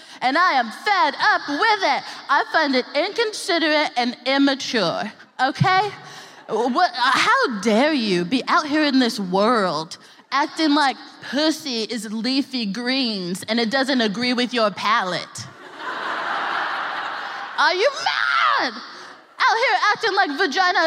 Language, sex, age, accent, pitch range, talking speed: English, female, 20-39, American, 235-335 Hz, 125 wpm